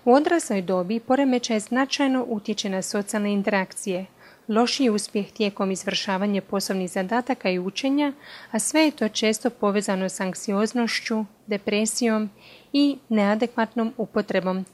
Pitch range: 195-240 Hz